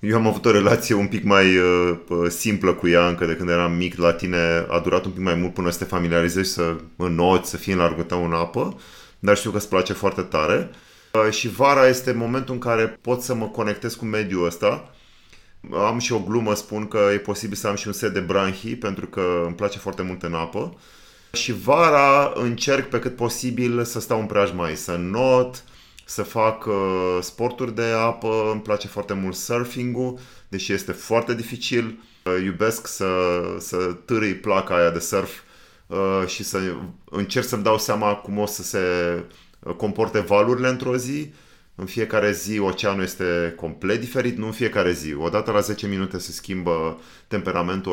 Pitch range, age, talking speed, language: 90-115 Hz, 30-49, 185 wpm, Romanian